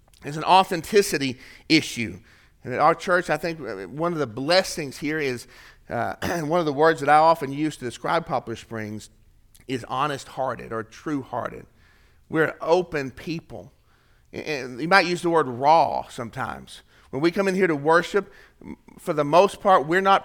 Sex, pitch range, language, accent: male, 140-180 Hz, English, American